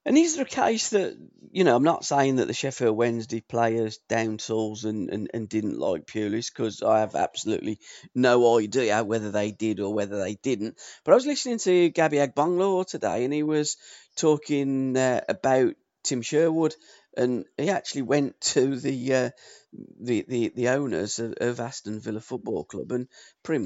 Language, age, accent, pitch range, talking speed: English, 40-59, British, 115-150 Hz, 185 wpm